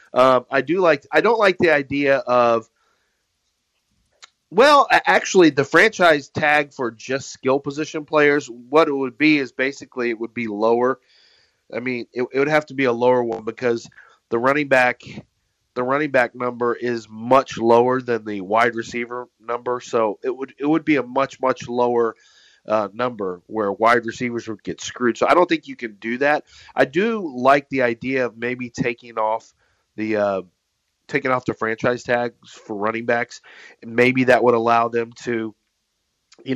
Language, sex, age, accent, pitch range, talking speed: English, male, 30-49, American, 115-130 Hz, 180 wpm